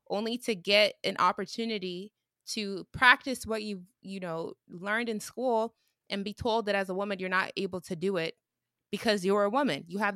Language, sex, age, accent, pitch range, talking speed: English, female, 20-39, American, 180-230 Hz, 195 wpm